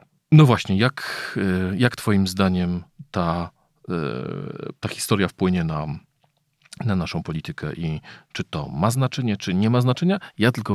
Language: Polish